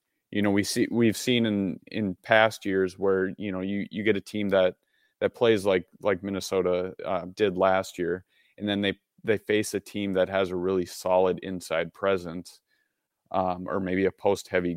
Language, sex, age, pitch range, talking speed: English, male, 30-49, 90-105 Hz, 190 wpm